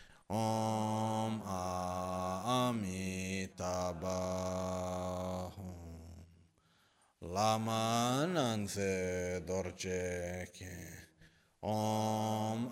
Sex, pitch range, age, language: male, 90-110 Hz, 30-49, Italian